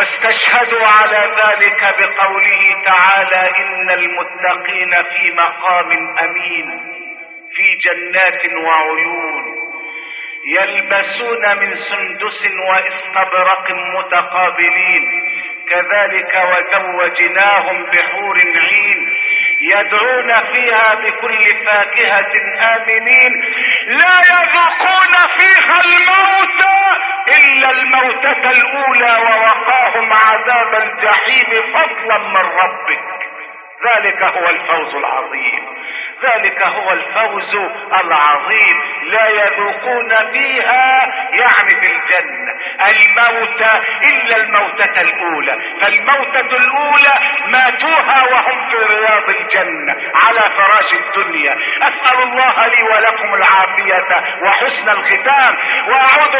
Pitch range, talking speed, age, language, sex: 195-255 Hz, 80 wpm, 50-69, Arabic, male